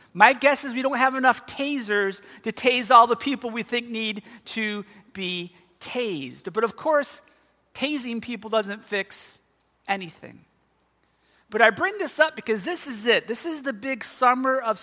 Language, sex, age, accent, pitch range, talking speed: English, male, 40-59, American, 220-255 Hz, 170 wpm